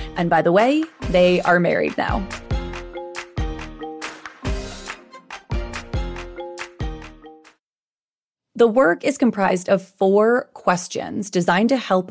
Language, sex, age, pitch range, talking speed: English, female, 30-49, 175-230 Hz, 90 wpm